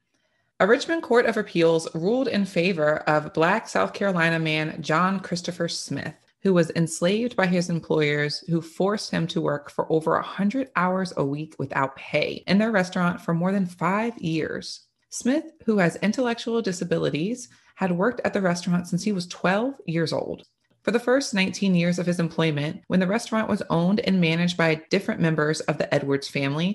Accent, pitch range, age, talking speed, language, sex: American, 160-205 Hz, 30-49, 180 wpm, English, female